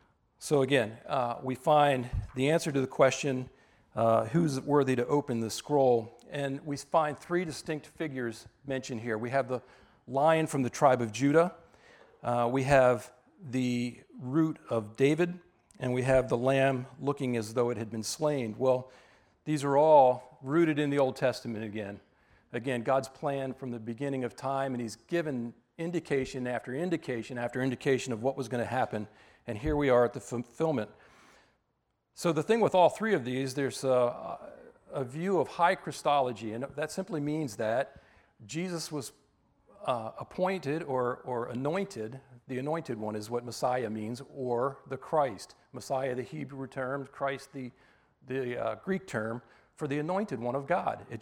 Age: 40-59